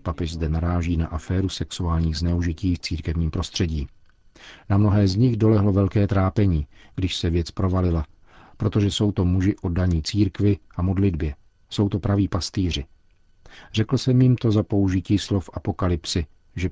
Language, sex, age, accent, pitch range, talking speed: Czech, male, 50-69, native, 85-105 Hz, 150 wpm